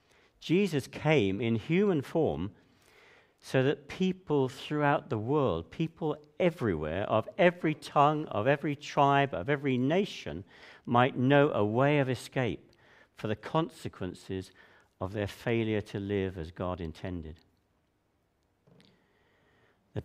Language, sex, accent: English, male, British